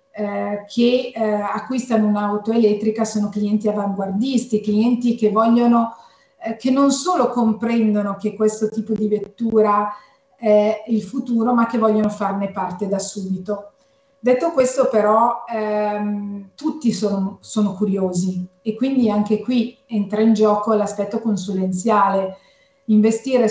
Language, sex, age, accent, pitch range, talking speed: Italian, female, 40-59, native, 205-235 Hz, 130 wpm